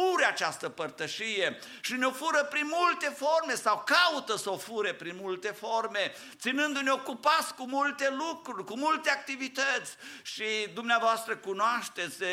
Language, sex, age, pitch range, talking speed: English, male, 50-69, 140-230 Hz, 135 wpm